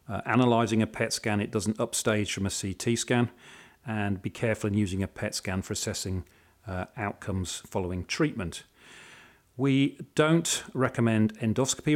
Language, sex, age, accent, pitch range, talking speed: English, male, 40-59, British, 100-125 Hz, 150 wpm